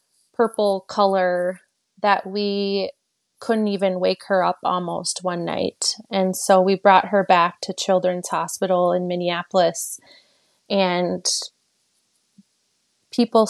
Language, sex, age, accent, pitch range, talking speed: English, female, 20-39, American, 185-215 Hz, 110 wpm